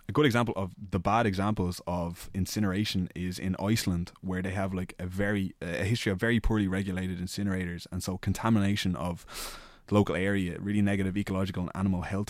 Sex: male